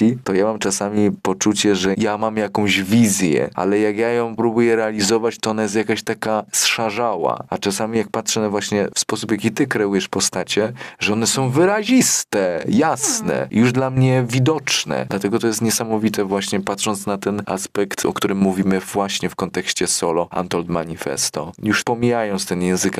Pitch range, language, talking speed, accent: 95-110 Hz, Polish, 170 wpm, native